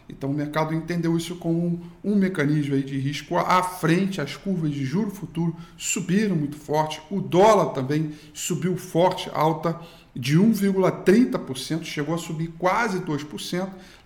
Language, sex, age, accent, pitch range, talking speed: Portuguese, male, 50-69, Brazilian, 150-185 Hz, 150 wpm